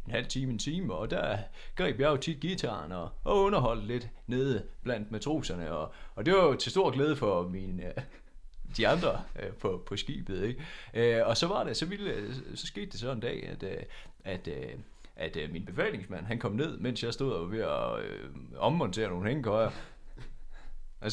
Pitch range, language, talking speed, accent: 105-130 Hz, Danish, 195 wpm, native